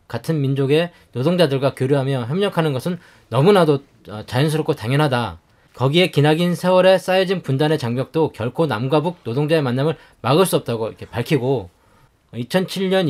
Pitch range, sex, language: 135-175 Hz, male, Korean